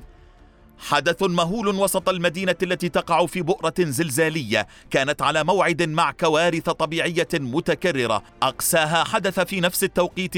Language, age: Arabic, 30-49